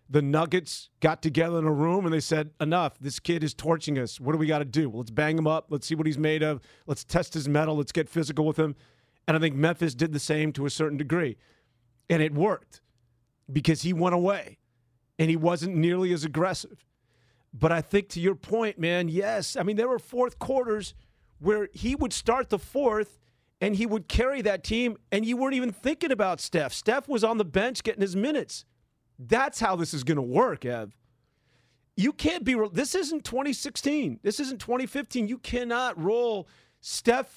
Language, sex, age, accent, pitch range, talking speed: English, male, 40-59, American, 155-220 Hz, 205 wpm